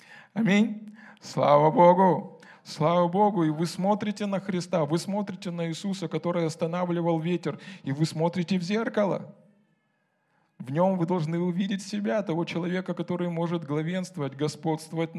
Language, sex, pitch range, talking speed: Russian, male, 165-195 Hz, 135 wpm